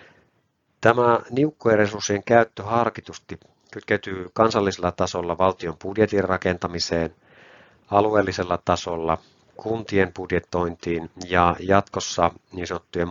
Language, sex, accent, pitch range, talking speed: Finnish, male, native, 85-100 Hz, 80 wpm